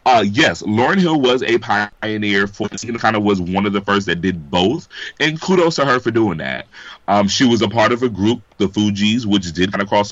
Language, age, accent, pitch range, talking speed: English, 30-49, American, 95-120 Hz, 250 wpm